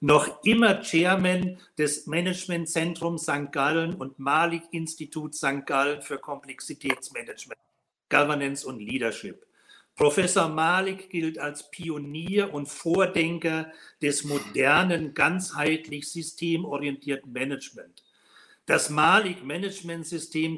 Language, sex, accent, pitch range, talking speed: German, male, German, 145-170 Hz, 85 wpm